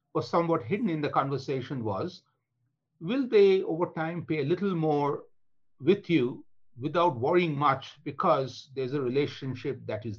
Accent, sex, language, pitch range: Indian, male, English, 120-160 Hz